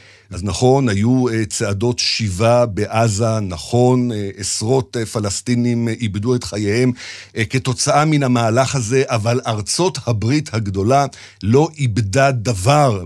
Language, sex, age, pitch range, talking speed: Hebrew, male, 50-69, 105-145 Hz, 105 wpm